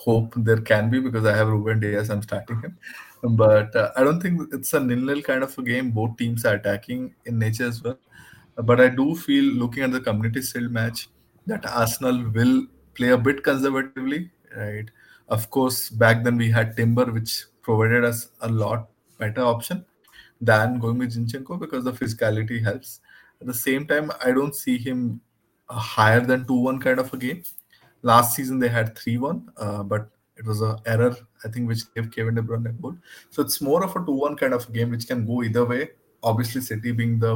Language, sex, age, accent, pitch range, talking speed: English, male, 20-39, Indian, 110-130 Hz, 200 wpm